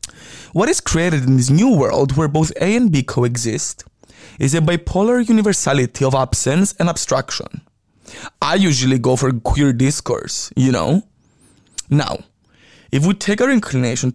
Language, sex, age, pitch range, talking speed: English, male, 20-39, 130-190 Hz, 150 wpm